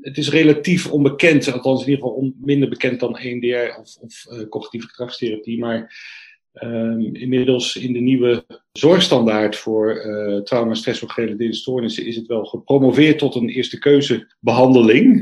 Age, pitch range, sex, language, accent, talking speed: 40-59, 115-135 Hz, male, Dutch, Dutch, 155 wpm